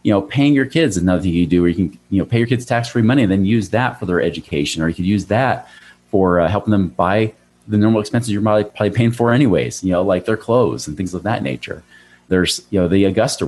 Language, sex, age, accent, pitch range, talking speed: English, male, 30-49, American, 85-115 Hz, 265 wpm